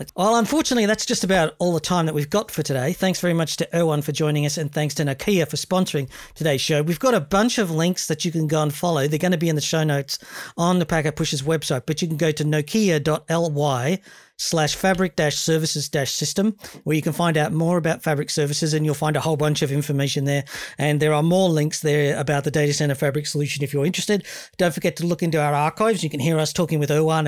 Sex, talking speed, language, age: male, 240 wpm, English, 40-59